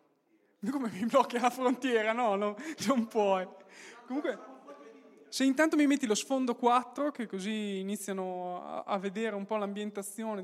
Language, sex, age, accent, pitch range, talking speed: Italian, male, 20-39, native, 195-245 Hz, 140 wpm